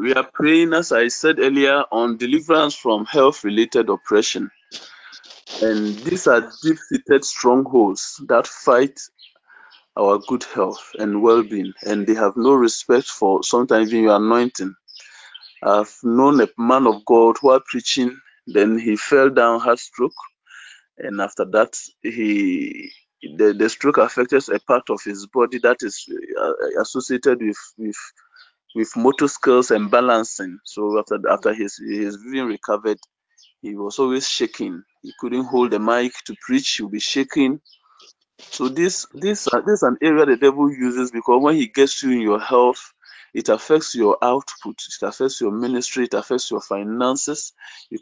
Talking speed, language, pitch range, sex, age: 155 wpm, English, 115-180 Hz, male, 20-39